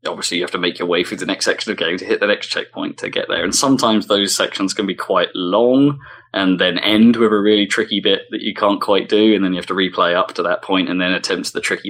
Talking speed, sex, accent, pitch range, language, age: 285 wpm, male, British, 90-115 Hz, English, 20-39